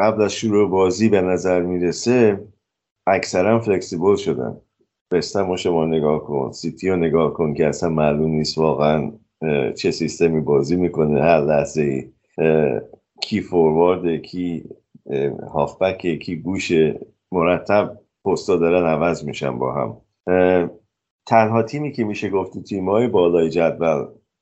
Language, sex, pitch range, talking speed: Persian, male, 75-95 Hz, 125 wpm